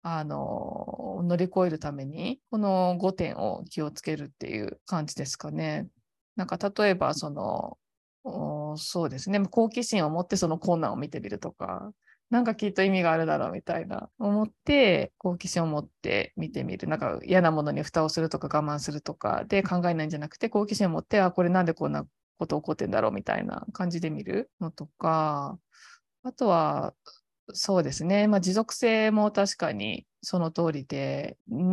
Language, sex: Japanese, female